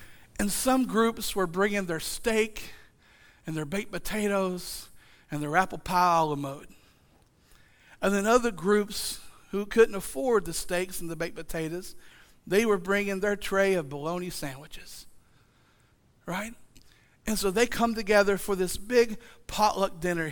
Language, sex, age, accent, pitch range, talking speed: English, male, 50-69, American, 165-200 Hz, 150 wpm